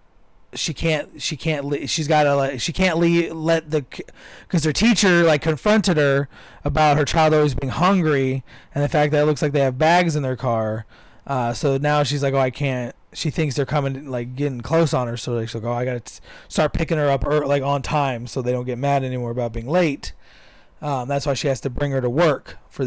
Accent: American